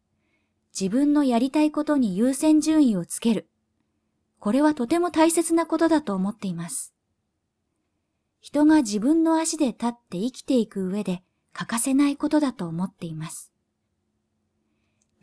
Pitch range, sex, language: 195-285 Hz, female, Japanese